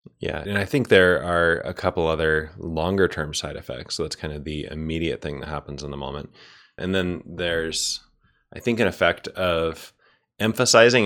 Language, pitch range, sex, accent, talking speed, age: English, 75-95 Hz, male, American, 185 wpm, 20-39